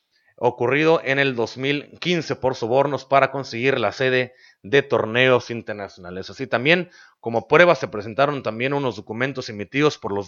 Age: 40-59